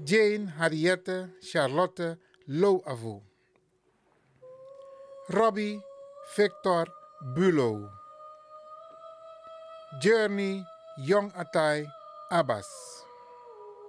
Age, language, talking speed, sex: 50-69, Dutch, 45 wpm, male